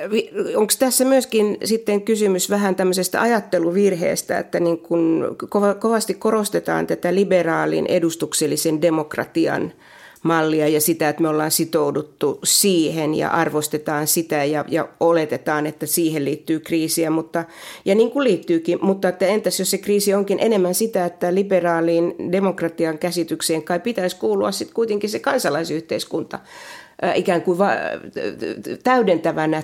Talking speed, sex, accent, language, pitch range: 130 wpm, female, native, Finnish, 160-195 Hz